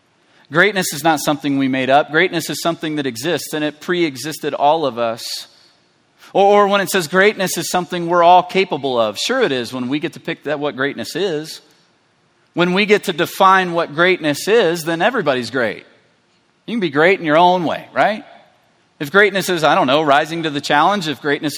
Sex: male